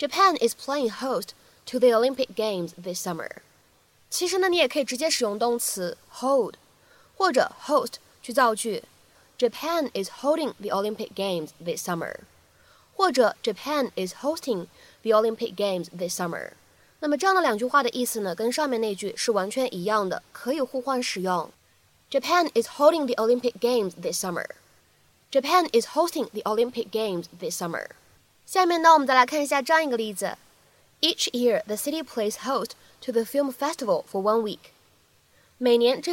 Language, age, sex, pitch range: Chinese, 20-39, female, 215-290 Hz